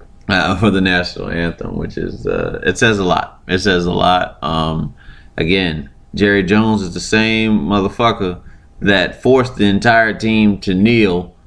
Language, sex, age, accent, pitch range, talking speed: English, male, 30-49, American, 85-105 Hz, 160 wpm